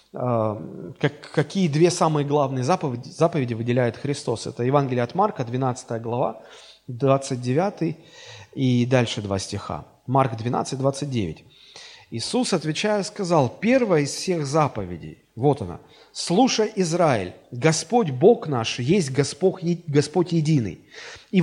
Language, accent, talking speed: Russian, native, 110 wpm